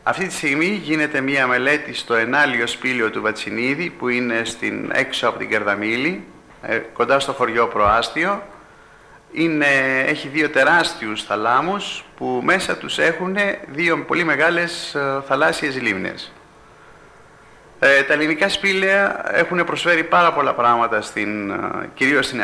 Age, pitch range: 30-49, 115-155 Hz